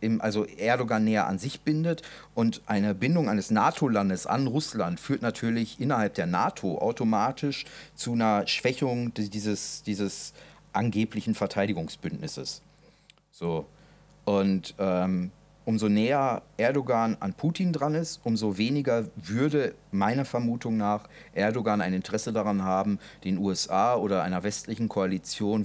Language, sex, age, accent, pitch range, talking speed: German, male, 40-59, German, 95-110 Hz, 125 wpm